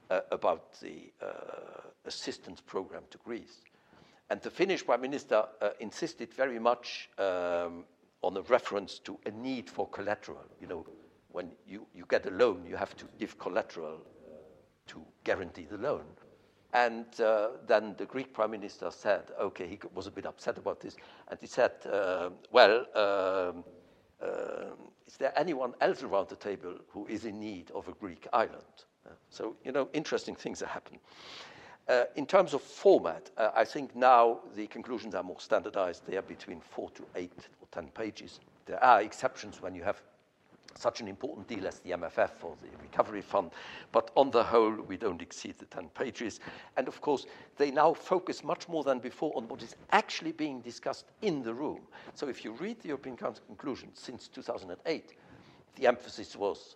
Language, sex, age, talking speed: English, male, 60-79, 180 wpm